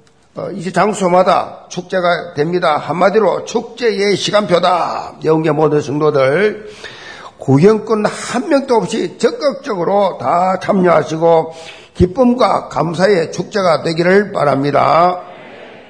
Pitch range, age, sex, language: 160-225 Hz, 50-69, male, Korean